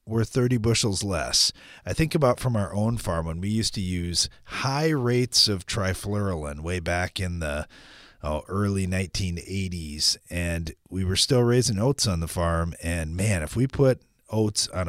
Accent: American